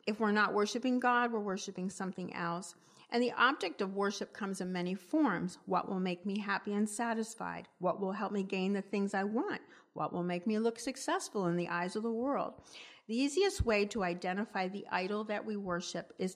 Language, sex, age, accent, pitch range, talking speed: English, female, 50-69, American, 180-225 Hz, 210 wpm